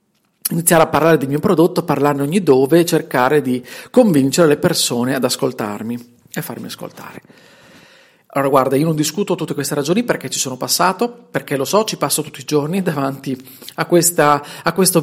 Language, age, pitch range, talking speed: Italian, 40-59, 145-220 Hz, 170 wpm